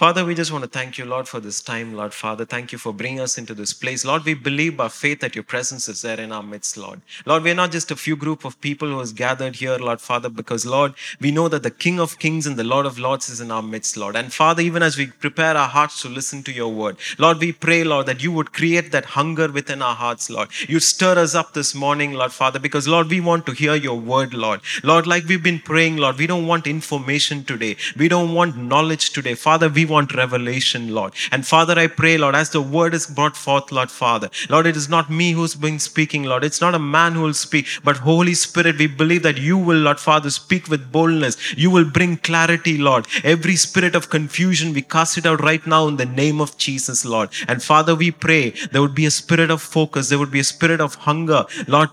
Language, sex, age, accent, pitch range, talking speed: English, male, 30-49, Indian, 130-160 Hz, 250 wpm